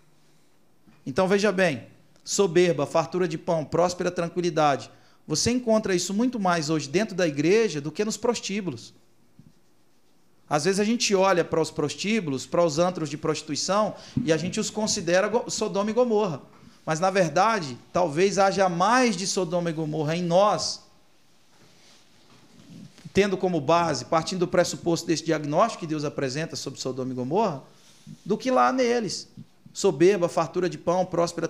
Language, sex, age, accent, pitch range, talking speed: Portuguese, male, 40-59, Brazilian, 160-195 Hz, 150 wpm